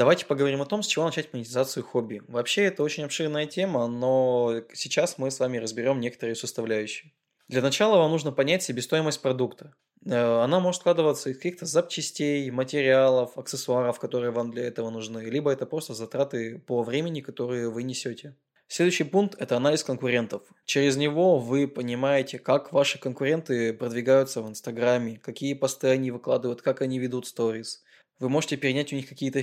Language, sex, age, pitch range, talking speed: Russian, male, 20-39, 120-145 Hz, 165 wpm